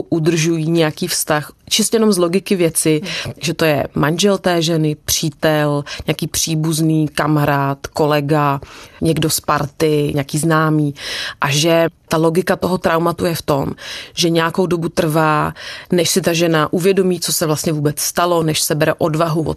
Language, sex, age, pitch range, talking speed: Czech, female, 30-49, 155-175 Hz, 160 wpm